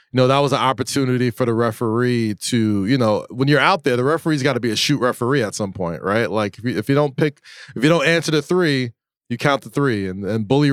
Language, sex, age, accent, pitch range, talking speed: English, male, 20-39, American, 120-140 Hz, 270 wpm